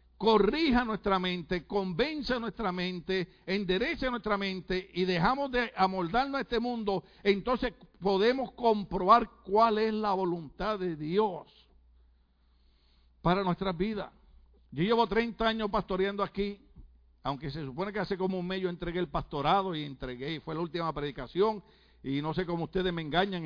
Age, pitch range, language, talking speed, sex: 60-79, 150-210 Hz, Spanish, 155 wpm, male